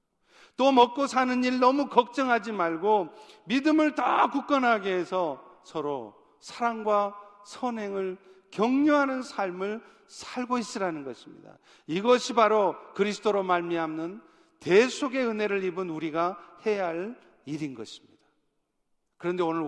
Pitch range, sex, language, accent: 170-225 Hz, male, Korean, native